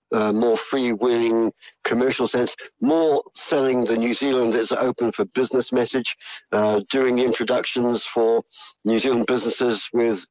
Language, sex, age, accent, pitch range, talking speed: English, male, 60-79, British, 110-130 Hz, 140 wpm